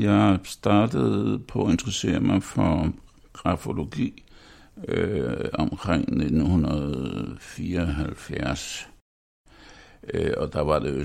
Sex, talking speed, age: male, 60 wpm, 60-79